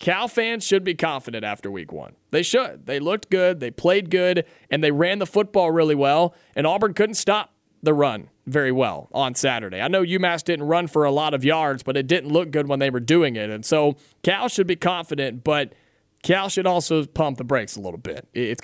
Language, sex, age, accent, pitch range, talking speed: English, male, 30-49, American, 135-185 Hz, 225 wpm